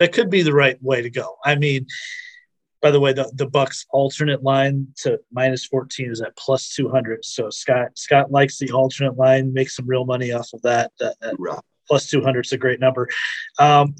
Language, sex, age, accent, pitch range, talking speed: English, male, 30-49, American, 130-145 Hz, 215 wpm